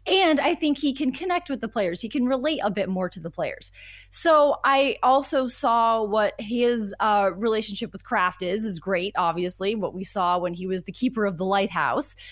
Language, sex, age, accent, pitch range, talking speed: English, female, 20-39, American, 200-265 Hz, 210 wpm